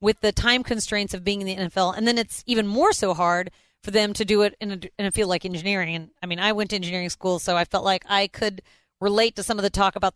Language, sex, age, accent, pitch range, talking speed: English, female, 40-59, American, 180-220 Hz, 290 wpm